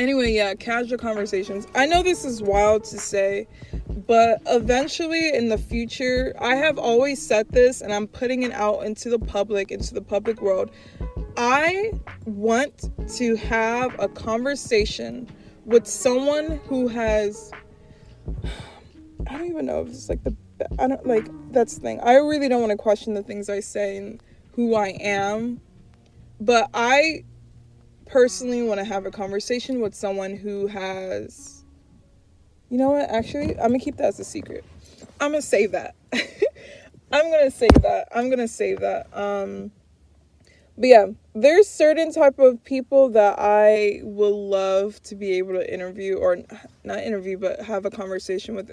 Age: 20-39